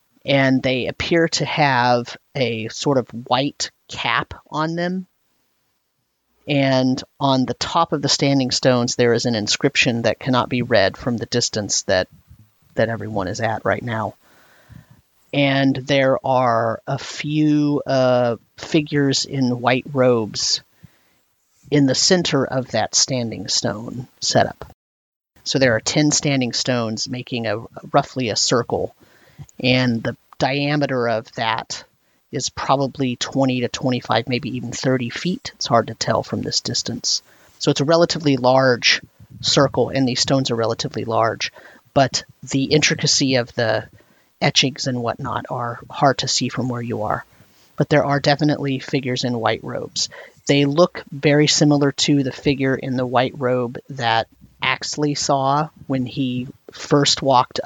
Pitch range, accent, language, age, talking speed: 120-140 Hz, American, English, 40-59, 150 wpm